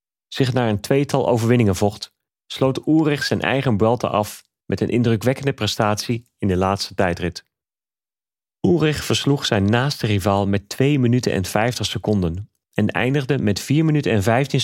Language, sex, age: English, male, 40-59